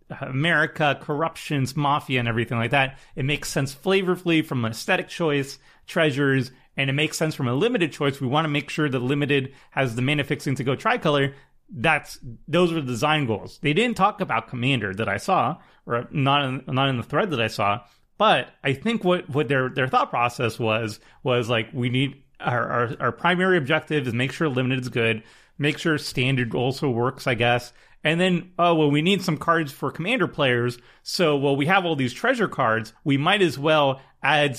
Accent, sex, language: American, male, English